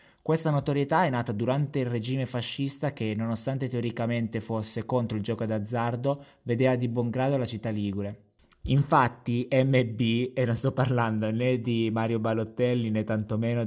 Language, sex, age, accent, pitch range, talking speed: Italian, male, 20-39, native, 110-130 Hz, 155 wpm